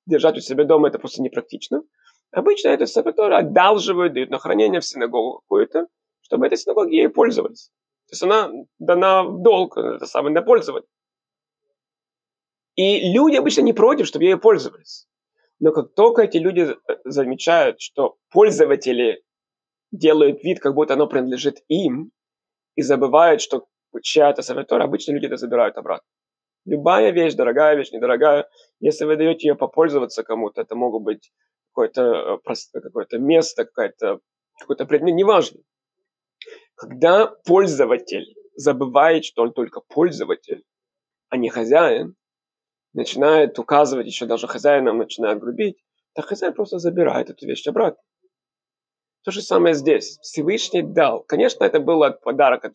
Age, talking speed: 20-39, 140 wpm